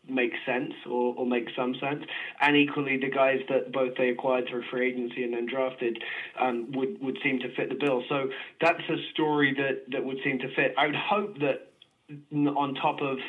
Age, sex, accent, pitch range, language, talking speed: 20-39, male, British, 125-135 Hz, English, 210 wpm